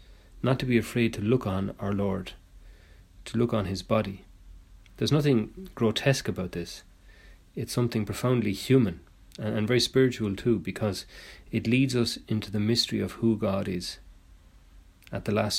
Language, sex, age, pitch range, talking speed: English, male, 40-59, 90-115 Hz, 160 wpm